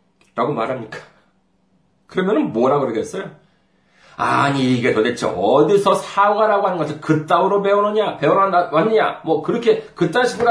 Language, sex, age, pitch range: Korean, male, 40-59, 165-255 Hz